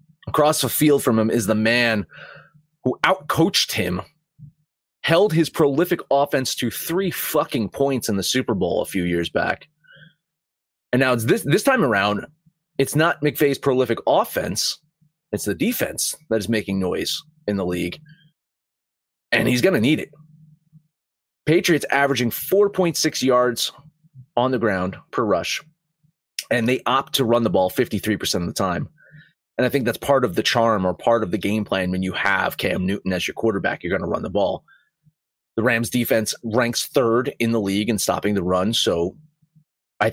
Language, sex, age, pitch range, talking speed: English, male, 30-49, 100-150 Hz, 175 wpm